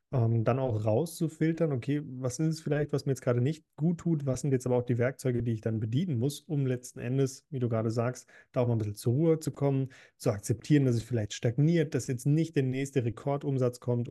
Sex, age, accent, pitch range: male, 30-49, German, 120-145 Hz